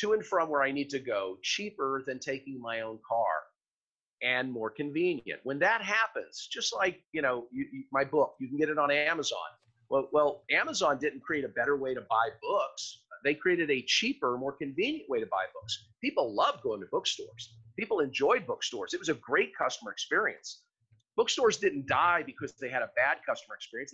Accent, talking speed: American, 200 wpm